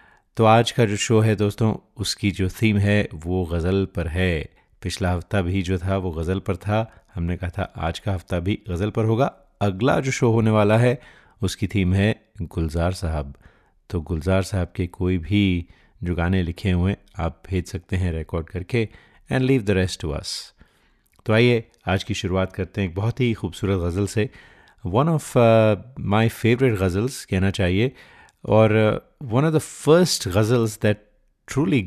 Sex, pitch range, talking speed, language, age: male, 90-110 Hz, 175 wpm, Hindi, 30-49